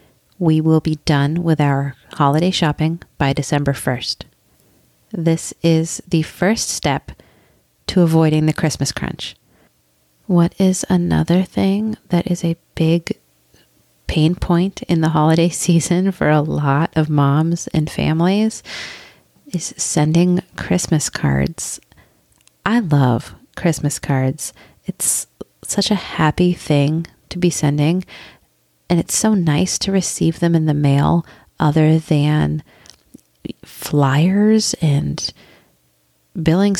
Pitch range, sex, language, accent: 145-180 Hz, female, English, American